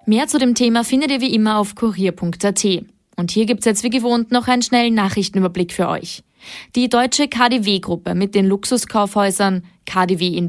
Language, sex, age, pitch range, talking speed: German, female, 20-39, 190-240 Hz, 170 wpm